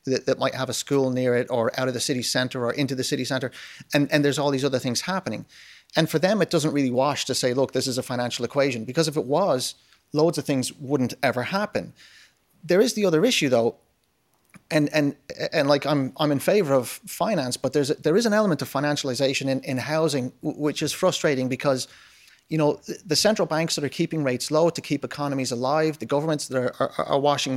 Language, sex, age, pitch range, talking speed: English, male, 30-49, 130-155 Hz, 225 wpm